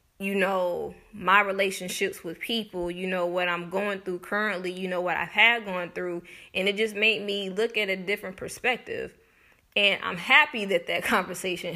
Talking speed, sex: 185 wpm, female